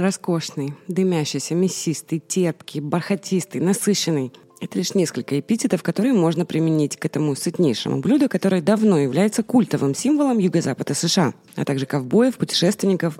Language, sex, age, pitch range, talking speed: Russian, female, 30-49, 150-200 Hz, 130 wpm